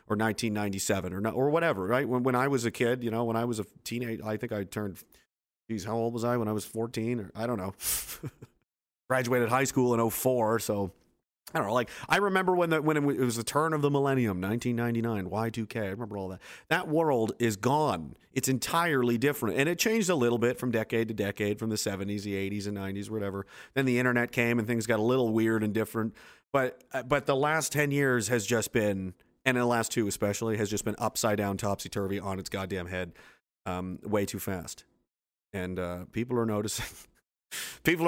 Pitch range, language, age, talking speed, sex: 105-130 Hz, English, 30-49, 215 wpm, male